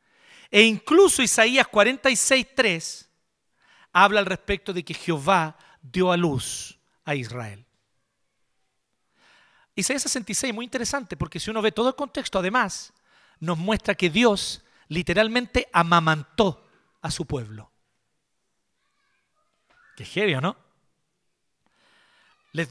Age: 40-59